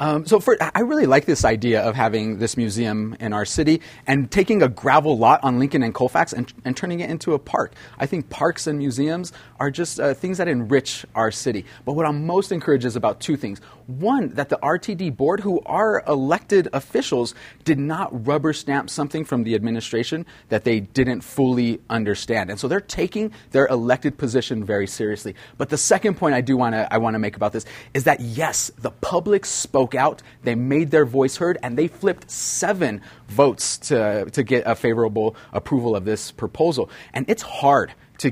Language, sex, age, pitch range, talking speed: English, male, 30-49, 115-150 Hz, 195 wpm